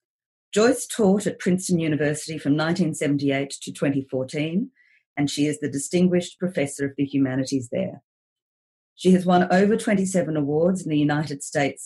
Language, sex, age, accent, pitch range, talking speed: English, female, 40-59, Australian, 145-185 Hz, 145 wpm